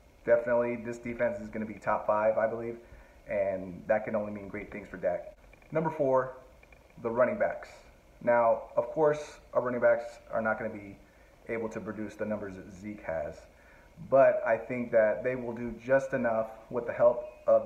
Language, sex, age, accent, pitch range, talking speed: English, male, 30-49, American, 110-125 Hz, 195 wpm